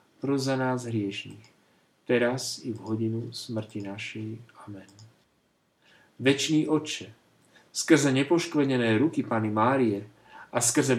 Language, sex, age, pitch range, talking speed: Slovak, male, 50-69, 110-150 Hz, 110 wpm